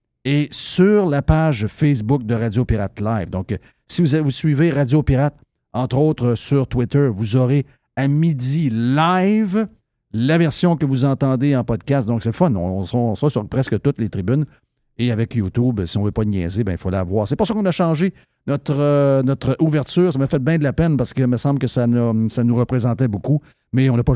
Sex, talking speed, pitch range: male, 225 wpm, 115-150 Hz